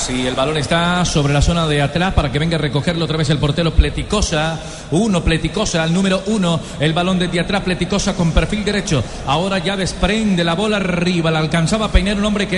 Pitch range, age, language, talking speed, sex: 180-215 Hz, 40-59, Spanish, 220 wpm, male